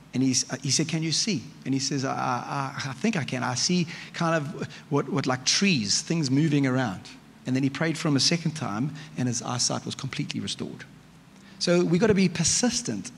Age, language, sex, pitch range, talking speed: 30-49, English, male, 145-185 Hz, 220 wpm